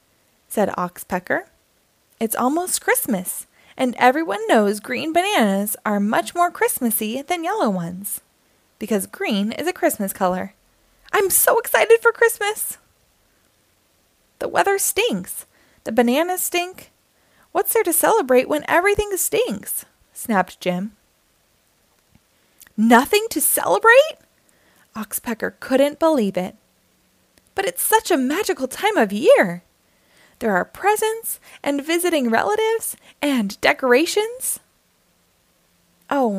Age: 20-39